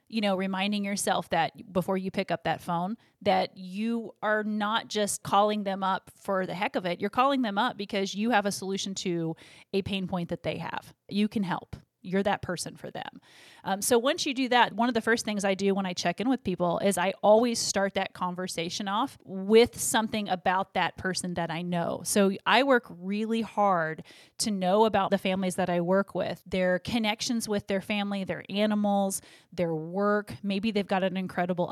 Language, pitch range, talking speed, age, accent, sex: English, 185-220 Hz, 210 wpm, 30-49, American, female